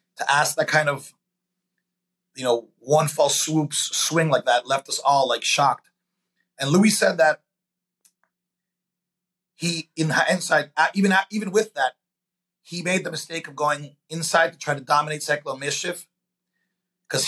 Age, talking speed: 30-49, 155 wpm